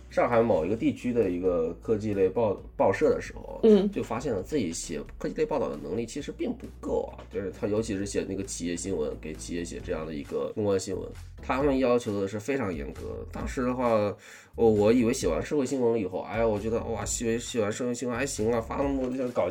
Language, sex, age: Chinese, male, 20-39